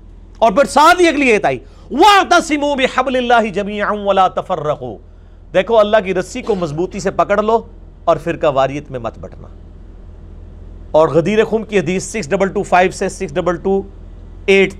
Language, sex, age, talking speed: Urdu, male, 40-59, 145 wpm